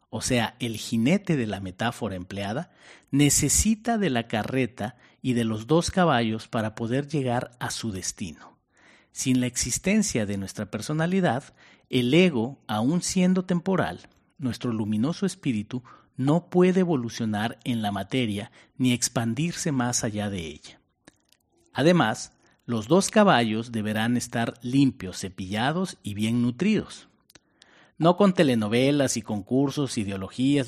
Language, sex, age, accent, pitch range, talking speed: Spanish, male, 40-59, Mexican, 110-145 Hz, 130 wpm